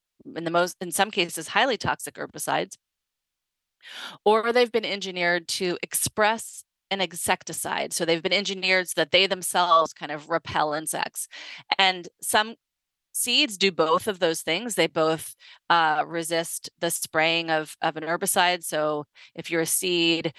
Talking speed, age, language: 155 wpm, 30-49, English